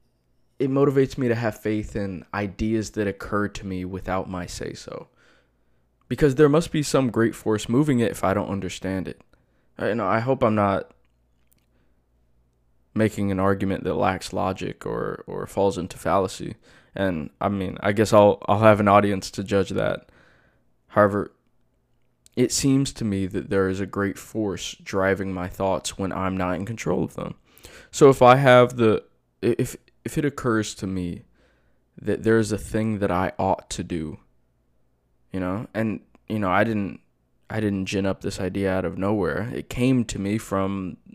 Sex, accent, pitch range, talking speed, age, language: male, American, 95-110 Hz, 180 wpm, 20-39, English